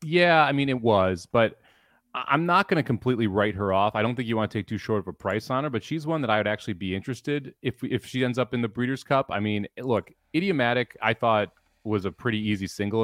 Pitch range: 105-130 Hz